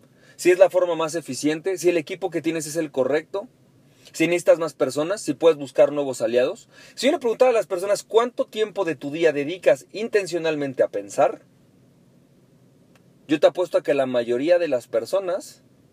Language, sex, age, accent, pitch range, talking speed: Spanish, male, 40-59, Mexican, 145-230 Hz, 185 wpm